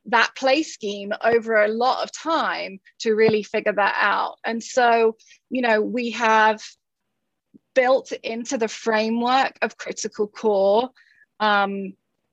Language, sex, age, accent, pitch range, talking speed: English, female, 20-39, British, 210-245 Hz, 130 wpm